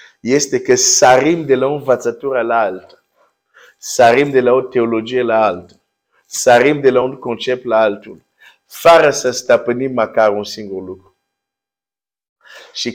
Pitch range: 125-200 Hz